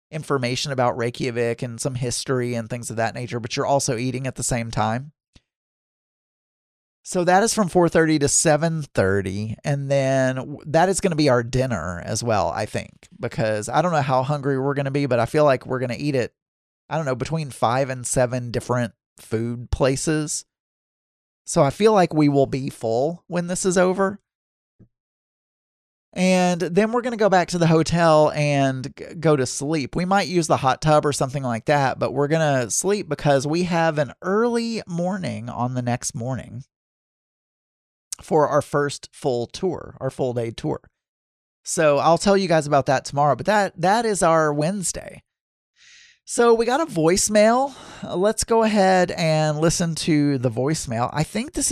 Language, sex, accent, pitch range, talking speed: English, male, American, 125-170 Hz, 185 wpm